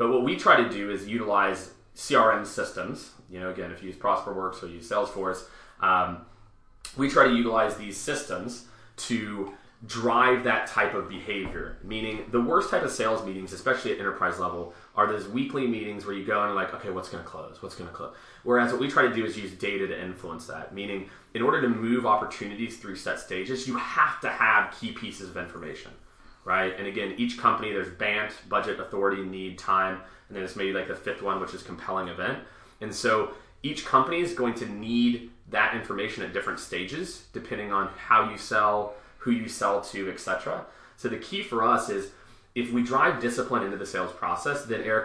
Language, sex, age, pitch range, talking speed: English, male, 30-49, 95-120 Hz, 205 wpm